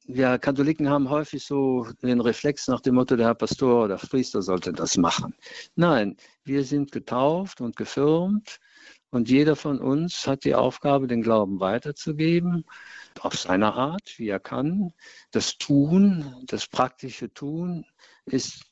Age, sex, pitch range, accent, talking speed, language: 50-69, male, 110-145 Hz, German, 150 wpm, German